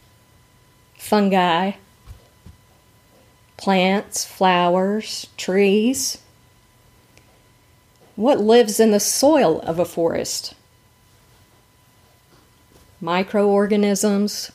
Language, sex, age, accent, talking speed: English, female, 40-59, American, 55 wpm